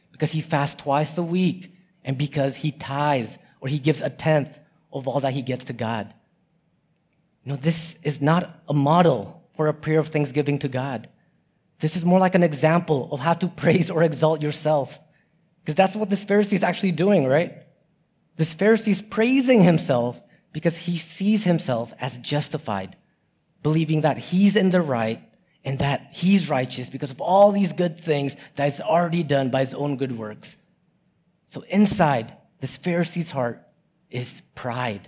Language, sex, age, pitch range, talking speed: English, male, 30-49, 145-185 Hz, 170 wpm